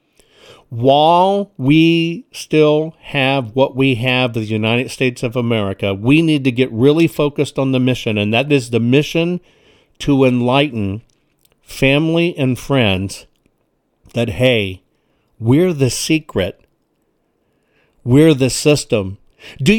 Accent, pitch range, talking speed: American, 130-165 Hz, 120 wpm